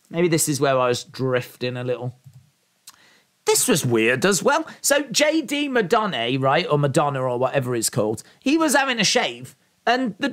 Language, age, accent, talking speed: English, 40-59, British, 180 wpm